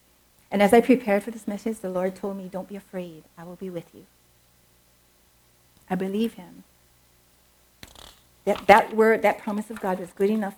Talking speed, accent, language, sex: 180 wpm, American, English, female